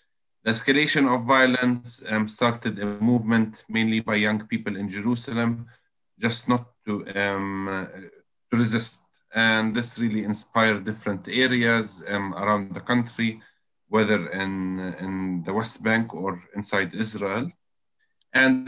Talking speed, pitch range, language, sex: 125 wpm, 100-120 Hz, English, male